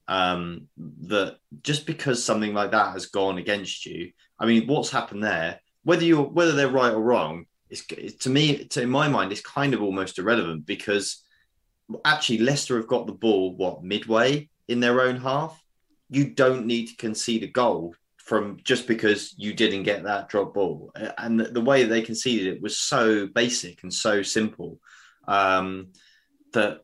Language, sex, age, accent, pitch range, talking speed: English, male, 20-39, British, 95-120 Hz, 175 wpm